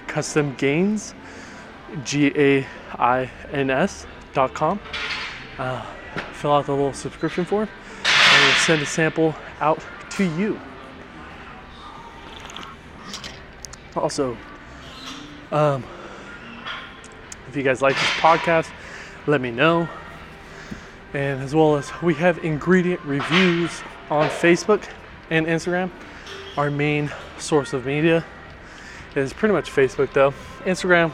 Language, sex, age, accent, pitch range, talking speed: English, male, 20-39, American, 135-175 Hz, 100 wpm